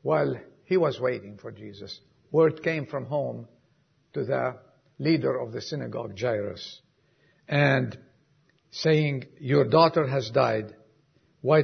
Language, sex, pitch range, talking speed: English, male, 125-160 Hz, 125 wpm